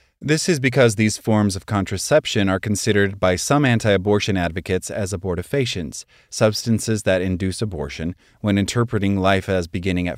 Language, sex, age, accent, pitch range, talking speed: English, male, 30-49, American, 90-110 Hz, 145 wpm